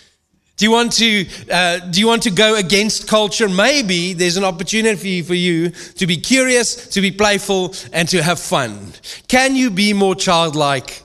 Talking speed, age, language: 160 wpm, 40-59, English